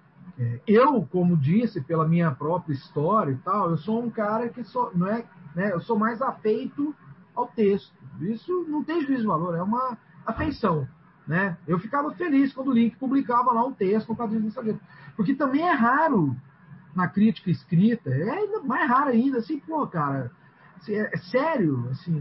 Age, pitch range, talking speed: 40-59, 165-245 Hz, 175 wpm